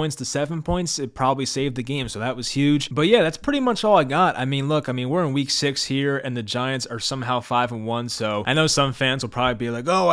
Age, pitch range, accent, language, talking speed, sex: 20-39, 125-170 Hz, American, English, 285 wpm, male